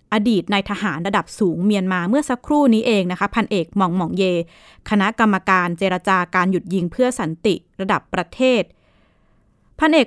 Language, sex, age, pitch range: Thai, female, 20-39, 185-240 Hz